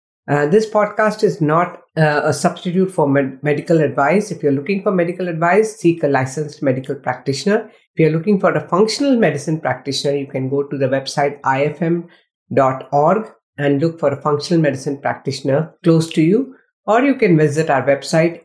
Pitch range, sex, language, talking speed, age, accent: 140-185 Hz, female, English, 170 wpm, 50-69, Indian